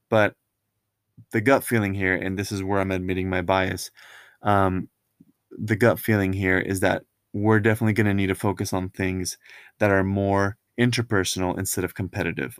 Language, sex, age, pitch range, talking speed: English, male, 20-39, 95-110 Hz, 170 wpm